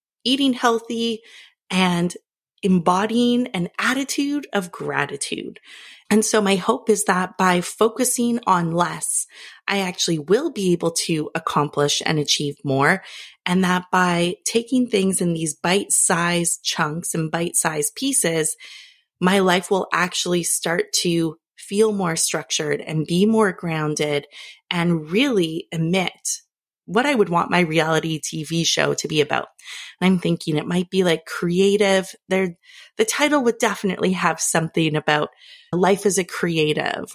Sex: female